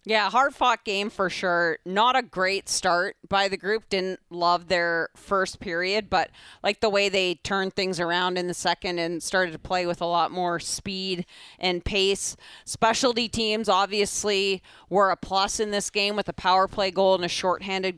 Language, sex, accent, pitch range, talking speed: English, female, American, 175-200 Hz, 185 wpm